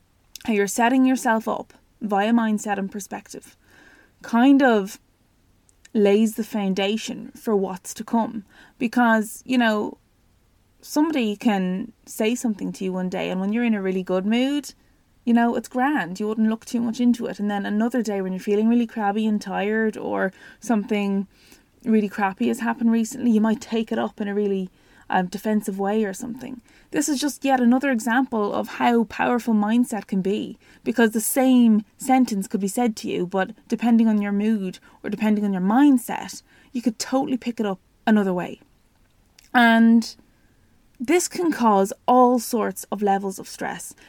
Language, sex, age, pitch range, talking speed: English, female, 20-39, 205-245 Hz, 175 wpm